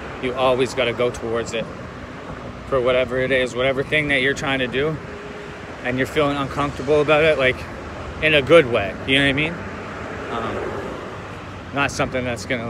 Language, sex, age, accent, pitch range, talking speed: English, male, 20-39, American, 120-140 Hz, 180 wpm